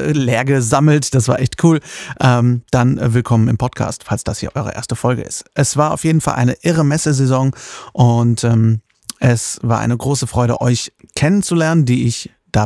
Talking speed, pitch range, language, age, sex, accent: 170 wpm, 115-135 Hz, German, 30-49, male, German